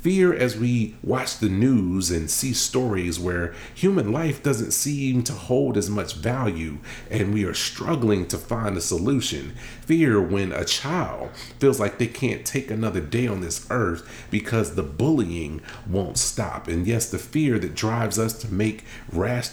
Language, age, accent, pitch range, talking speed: English, 40-59, American, 95-125 Hz, 170 wpm